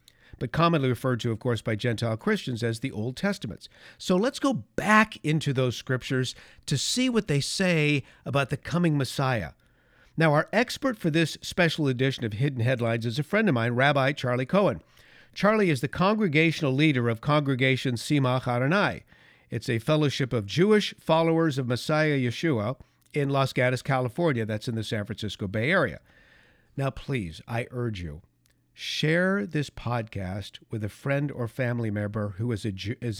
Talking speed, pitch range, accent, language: 170 wpm, 120-165 Hz, American, English